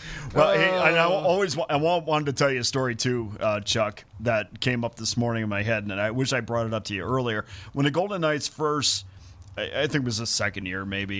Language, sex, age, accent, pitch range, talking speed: English, male, 30-49, American, 105-145 Hz, 250 wpm